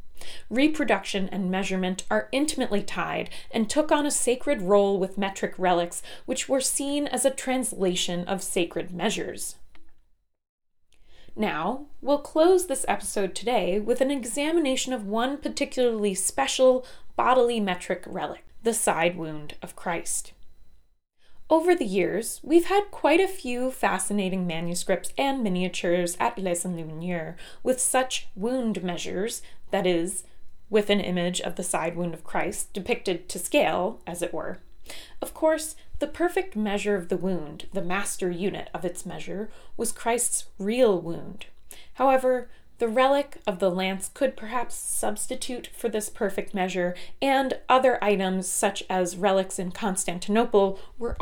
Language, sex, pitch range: English, female, 180-255 Hz